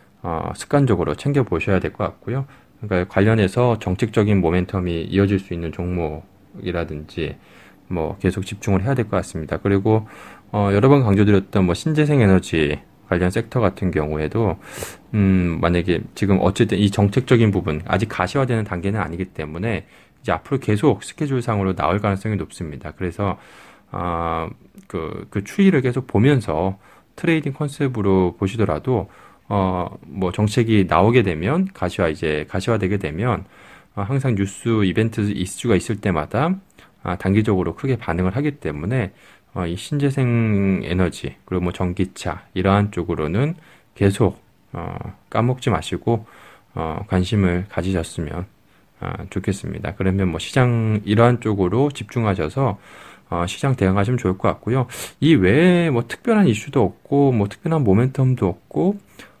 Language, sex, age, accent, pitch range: Korean, male, 20-39, native, 90-120 Hz